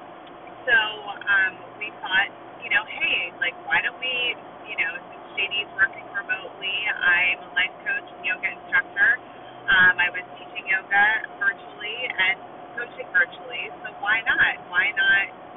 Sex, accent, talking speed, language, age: female, American, 145 wpm, English, 30-49